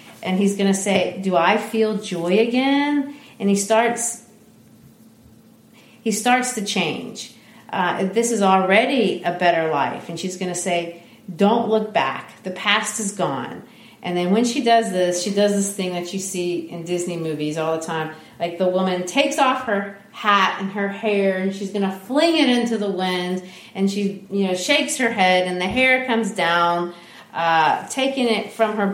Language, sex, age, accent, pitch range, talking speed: English, female, 40-59, American, 180-225 Hz, 190 wpm